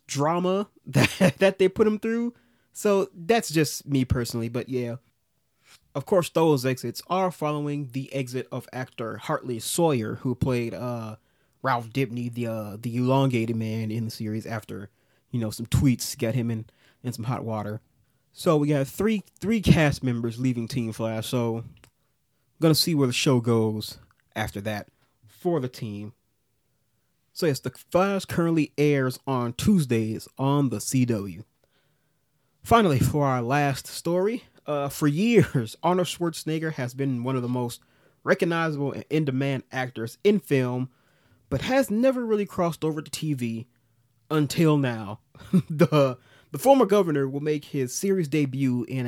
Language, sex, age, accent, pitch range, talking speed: English, male, 30-49, American, 120-155 Hz, 155 wpm